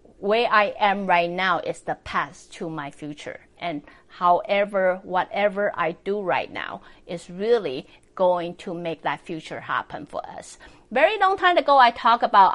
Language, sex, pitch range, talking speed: English, female, 175-230 Hz, 165 wpm